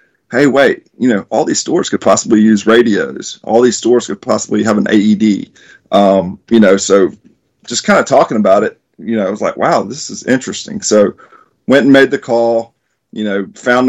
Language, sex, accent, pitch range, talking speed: English, male, American, 100-115 Hz, 205 wpm